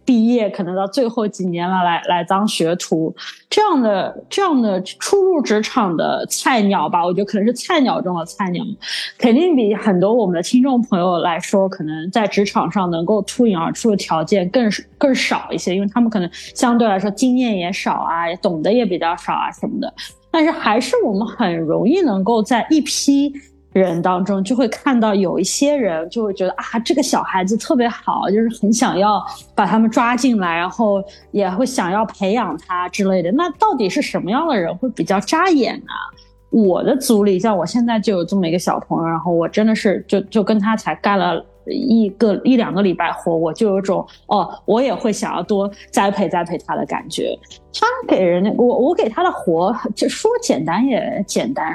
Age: 20-39